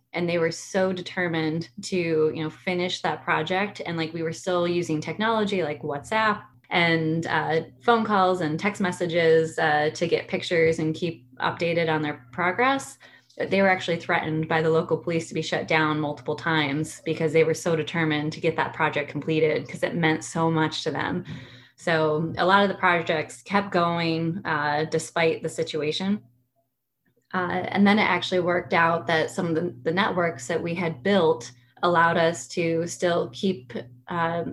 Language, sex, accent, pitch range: English, female, American, 160-180 Hz